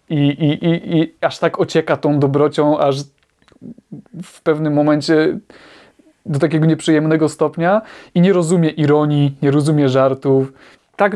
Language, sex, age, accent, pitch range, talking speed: Polish, male, 20-39, native, 145-190 Hz, 135 wpm